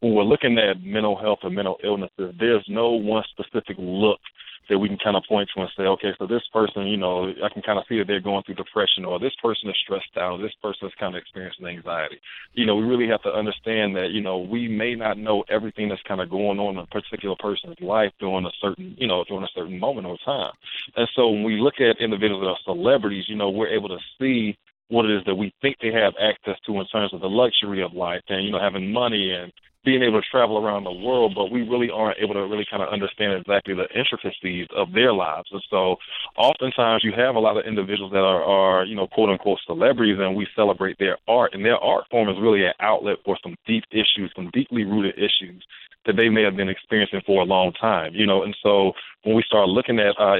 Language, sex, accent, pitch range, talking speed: English, male, American, 95-110 Hz, 250 wpm